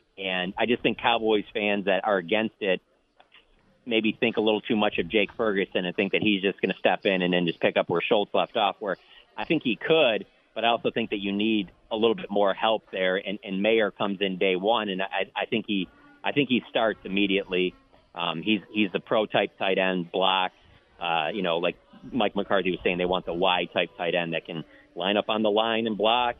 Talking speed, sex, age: 240 wpm, male, 40-59